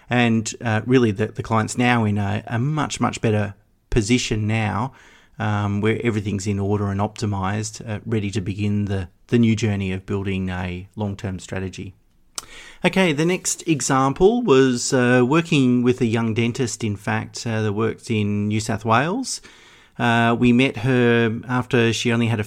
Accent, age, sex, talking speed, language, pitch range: Australian, 40-59, male, 170 wpm, English, 105-125 Hz